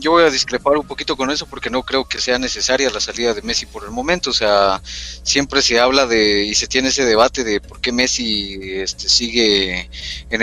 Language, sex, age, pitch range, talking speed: Spanish, male, 30-49, 105-130 Hz, 225 wpm